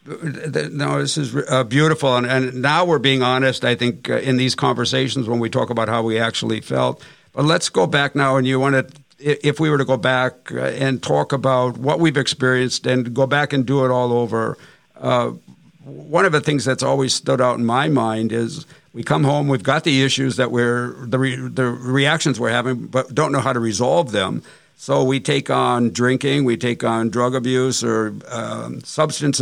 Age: 60-79